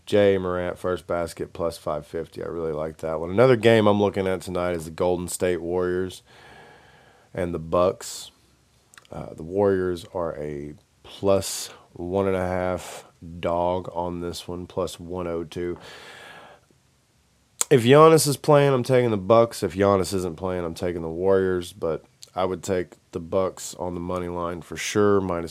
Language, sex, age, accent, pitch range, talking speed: English, male, 20-39, American, 85-100 Hz, 165 wpm